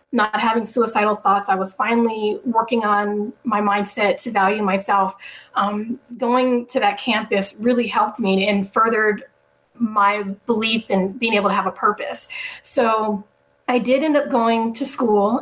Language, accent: English, American